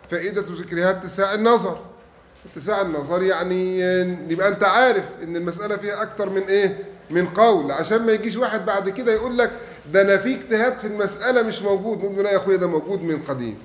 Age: 30-49